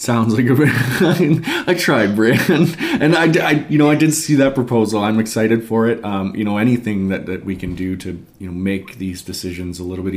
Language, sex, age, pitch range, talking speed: English, male, 30-49, 95-120 Hz, 230 wpm